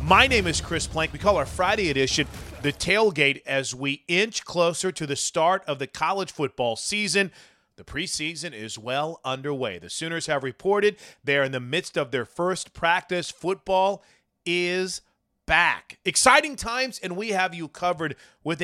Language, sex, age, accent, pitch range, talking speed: English, male, 30-49, American, 135-175 Hz, 165 wpm